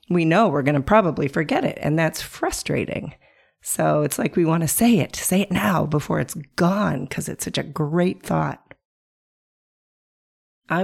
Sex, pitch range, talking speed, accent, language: female, 150-210 Hz, 175 wpm, American, English